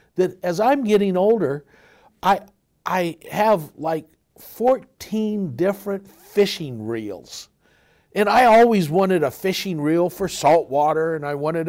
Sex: male